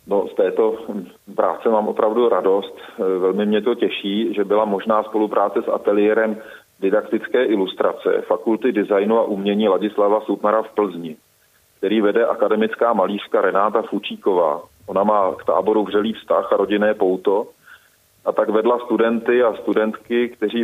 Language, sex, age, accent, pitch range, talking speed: Czech, male, 40-59, native, 105-125 Hz, 140 wpm